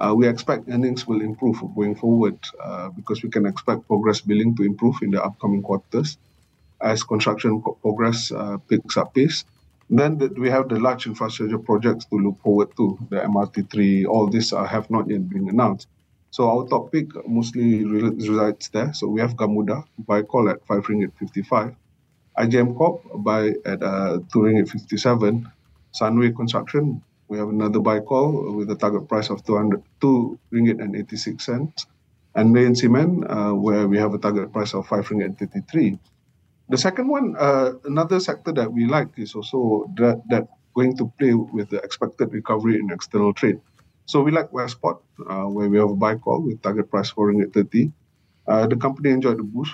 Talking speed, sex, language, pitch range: 170 wpm, male, English, 105-120 Hz